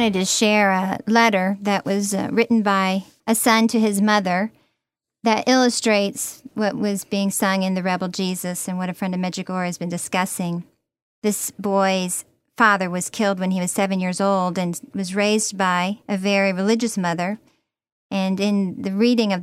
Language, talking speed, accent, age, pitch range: English, 180 wpm, American, 40-59, 185-215 Hz